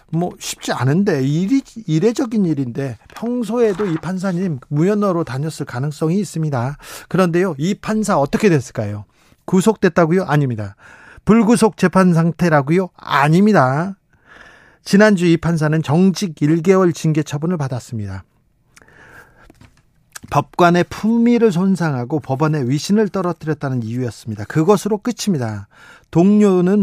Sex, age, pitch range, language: male, 40-59, 135-185 Hz, Korean